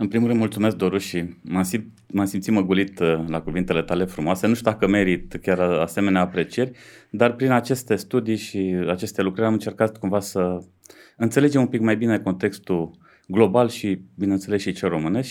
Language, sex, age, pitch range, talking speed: Romanian, male, 30-49, 95-115 Hz, 185 wpm